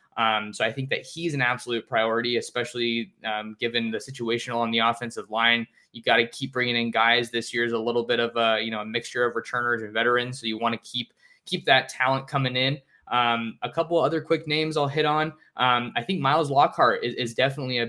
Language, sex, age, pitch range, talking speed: English, male, 20-39, 120-135 Hz, 230 wpm